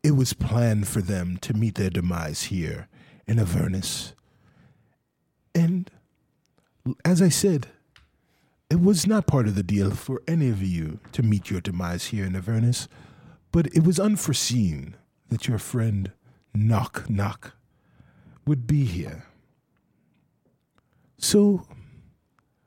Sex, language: male, English